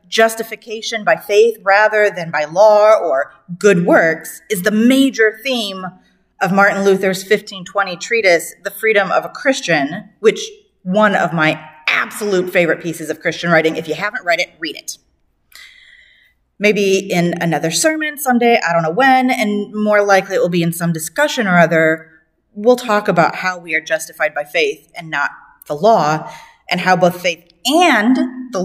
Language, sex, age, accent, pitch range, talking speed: English, female, 30-49, American, 170-230 Hz, 170 wpm